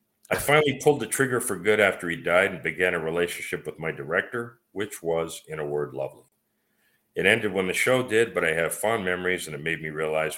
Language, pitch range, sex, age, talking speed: English, 85-135 Hz, male, 50-69, 225 wpm